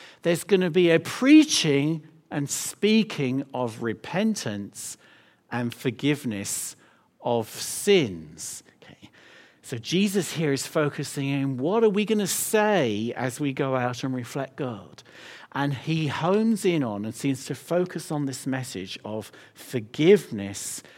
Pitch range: 130-185 Hz